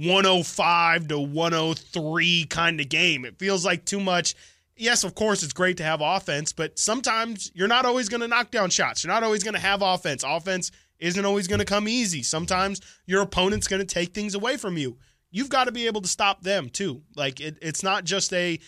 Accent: American